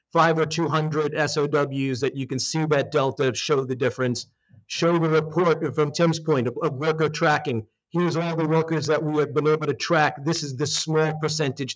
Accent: American